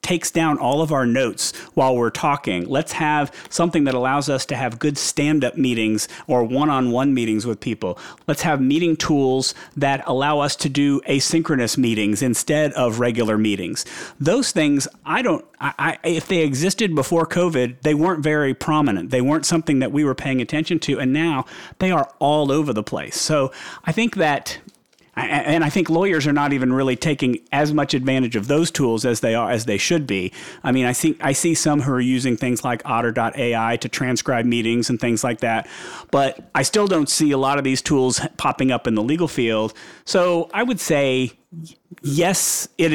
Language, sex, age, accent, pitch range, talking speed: English, male, 40-59, American, 125-160 Hz, 195 wpm